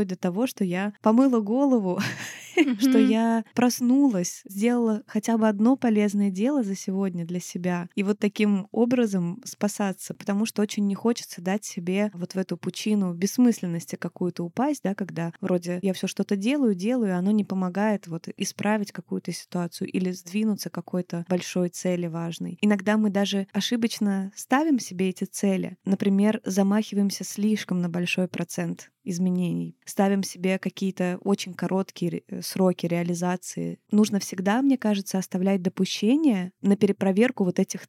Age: 20-39